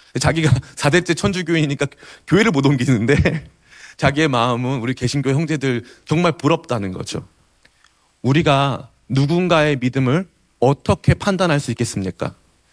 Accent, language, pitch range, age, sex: native, Korean, 125-165 Hz, 30-49, male